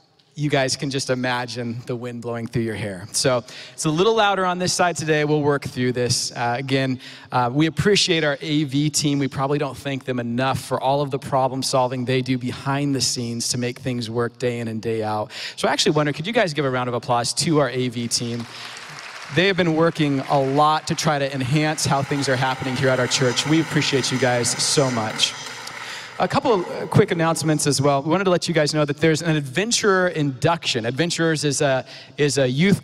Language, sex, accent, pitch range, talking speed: English, male, American, 130-160 Hz, 225 wpm